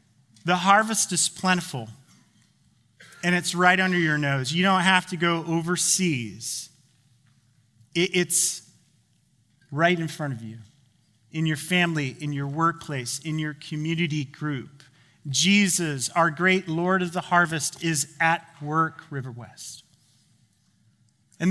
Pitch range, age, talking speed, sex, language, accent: 135-185 Hz, 30-49, 125 wpm, male, English, American